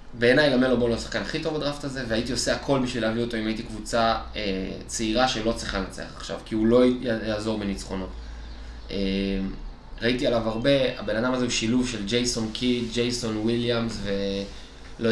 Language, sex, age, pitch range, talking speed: Hebrew, male, 20-39, 115-160 Hz, 185 wpm